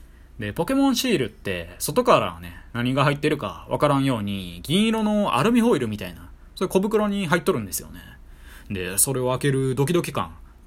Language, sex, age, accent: Japanese, male, 20-39, native